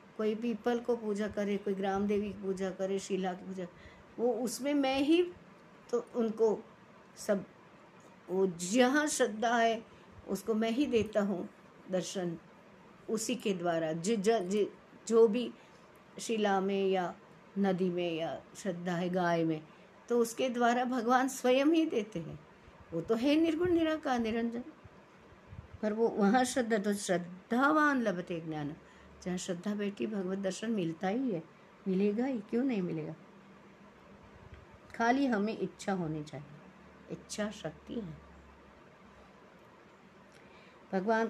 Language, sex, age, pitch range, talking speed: Hindi, female, 50-69, 190-235 Hz, 135 wpm